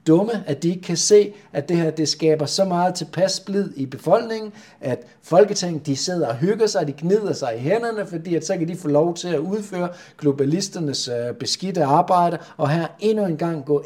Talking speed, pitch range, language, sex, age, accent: 190 wpm, 140-175 Hz, Danish, male, 60-79, native